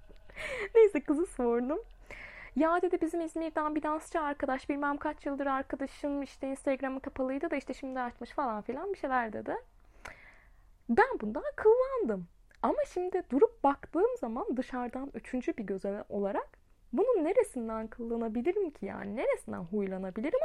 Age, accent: 10-29, native